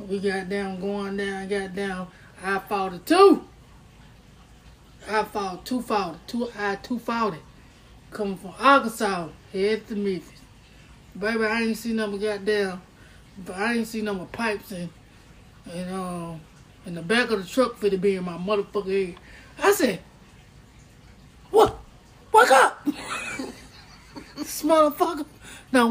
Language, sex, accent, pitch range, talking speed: English, male, American, 195-255 Hz, 145 wpm